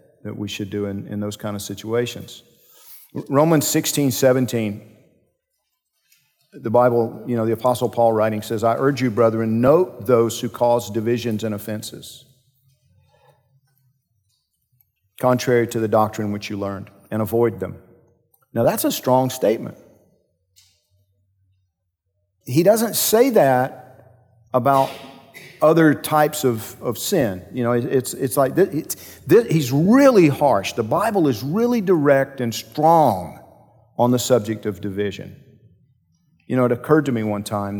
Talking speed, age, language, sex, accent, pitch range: 145 wpm, 50-69, English, male, American, 105-130 Hz